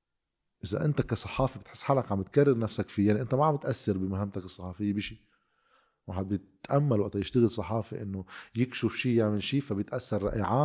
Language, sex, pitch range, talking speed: Arabic, male, 100-130 Hz, 170 wpm